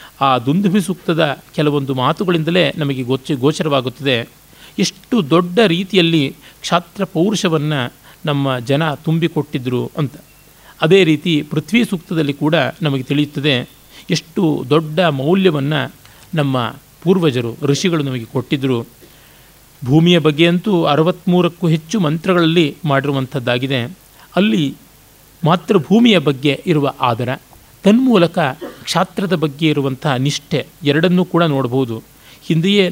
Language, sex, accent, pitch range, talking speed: Kannada, male, native, 135-165 Hz, 95 wpm